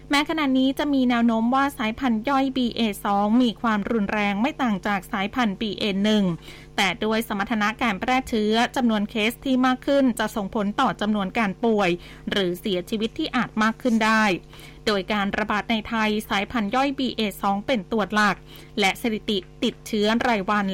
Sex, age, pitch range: female, 20-39, 205-255 Hz